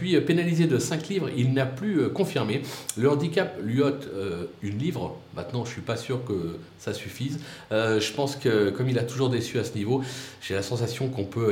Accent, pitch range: French, 120-145 Hz